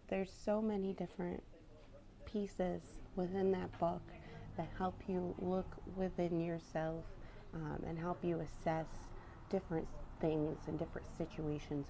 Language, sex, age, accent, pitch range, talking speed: English, female, 30-49, American, 140-175 Hz, 120 wpm